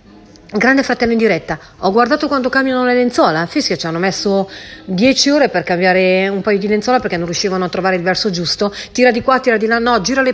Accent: native